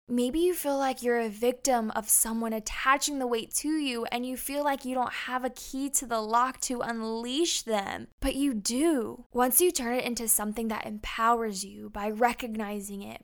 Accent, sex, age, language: American, female, 10-29, English